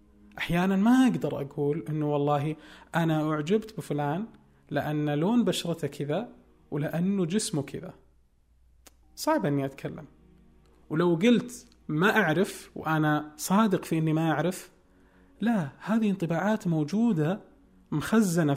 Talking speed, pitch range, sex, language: 110 wpm, 145-200 Hz, male, Arabic